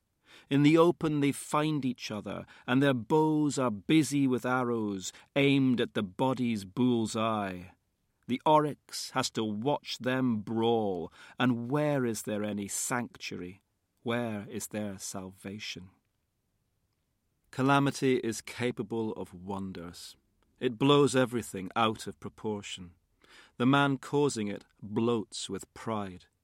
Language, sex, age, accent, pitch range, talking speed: English, male, 40-59, British, 100-130 Hz, 125 wpm